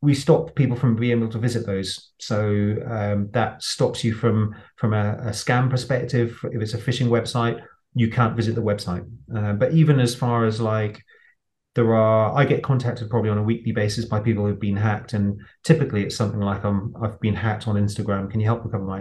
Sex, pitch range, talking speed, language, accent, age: male, 105-125 Hz, 215 wpm, English, British, 30-49